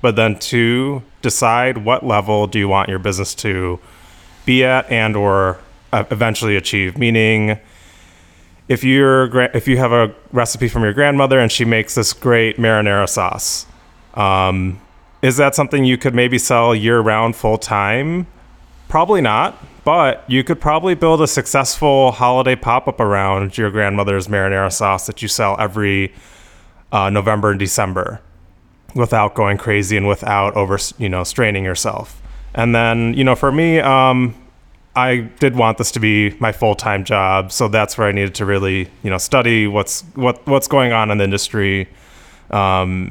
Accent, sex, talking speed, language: American, male, 160 wpm, English